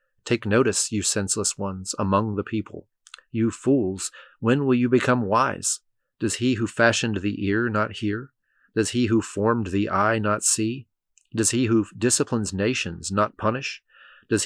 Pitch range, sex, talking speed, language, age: 100-115 Hz, male, 160 wpm, English, 30-49